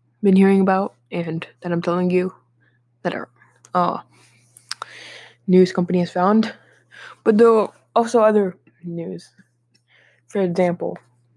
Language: English